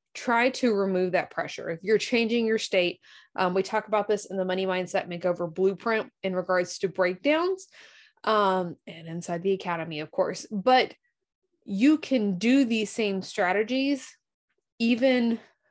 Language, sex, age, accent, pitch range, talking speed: English, female, 20-39, American, 180-245 Hz, 155 wpm